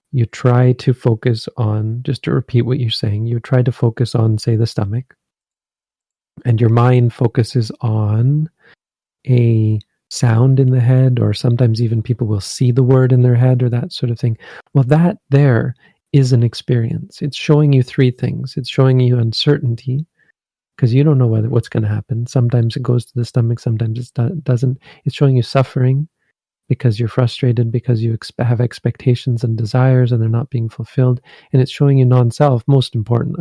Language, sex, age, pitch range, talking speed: English, male, 40-59, 120-140 Hz, 185 wpm